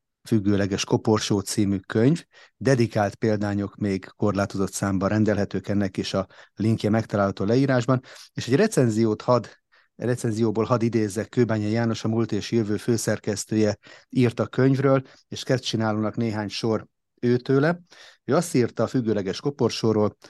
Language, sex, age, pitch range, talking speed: Hungarian, male, 30-49, 100-120 Hz, 130 wpm